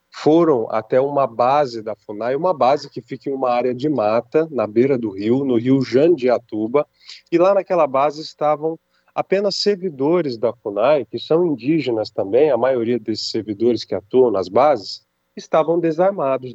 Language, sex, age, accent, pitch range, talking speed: Portuguese, male, 40-59, Brazilian, 120-155 Hz, 165 wpm